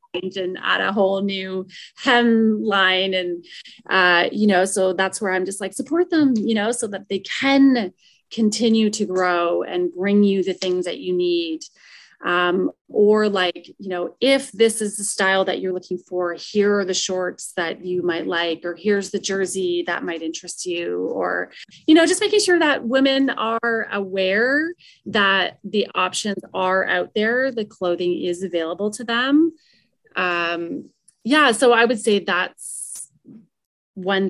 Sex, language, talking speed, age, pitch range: female, English, 170 wpm, 30-49, 175-225 Hz